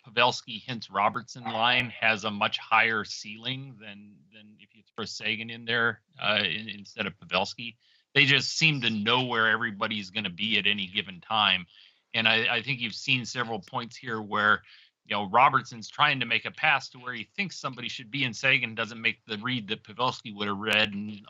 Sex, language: male, English